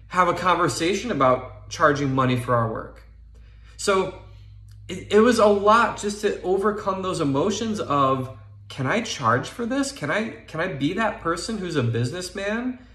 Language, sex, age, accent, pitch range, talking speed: English, male, 20-39, American, 120-195 Hz, 160 wpm